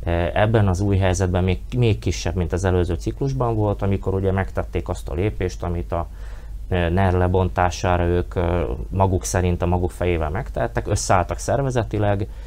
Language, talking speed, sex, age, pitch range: Hungarian, 150 wpm, male, 30-49, 90-105 Hz